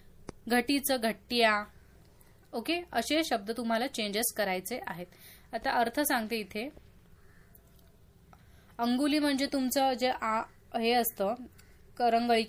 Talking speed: 95 wpm